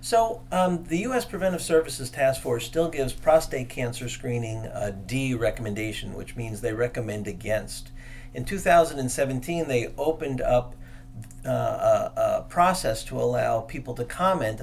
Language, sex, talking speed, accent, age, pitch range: English, male, 140 wpm, American, 50-69, 115-140 Hz